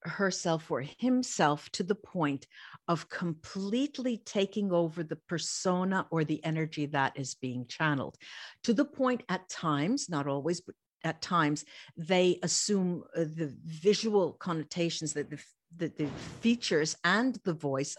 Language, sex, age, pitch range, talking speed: English, female, 50-69, 155-200 Hz, 135 wpm